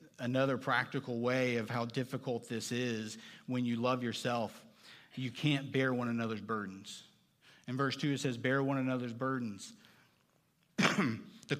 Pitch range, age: 125-155 Hz, 50-69